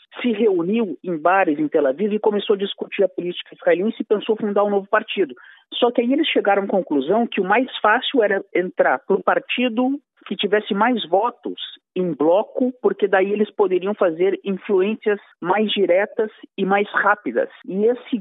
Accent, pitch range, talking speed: Brazilian, 185-235 Hz, 185 wpm